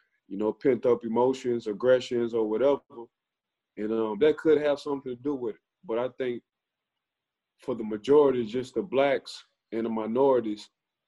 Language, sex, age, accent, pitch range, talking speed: English, male, 20-39, American, 120-170 Hz, 160 wpm